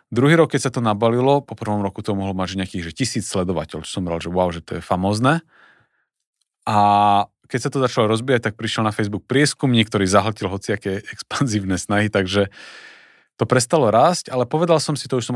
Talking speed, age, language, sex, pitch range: 205 wpm, 30-49, Slovak, male, 105-130 Hz